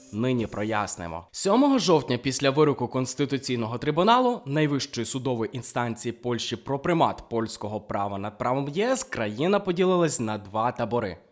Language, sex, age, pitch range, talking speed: Ukrainian, male, 20-39, 115-175 Hz, 125 wpm